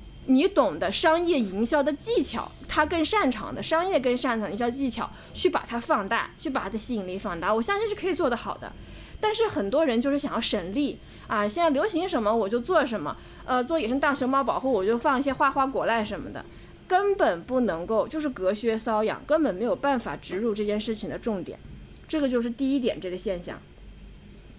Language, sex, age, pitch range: Chinese, female, 20-39, 220-290 Hz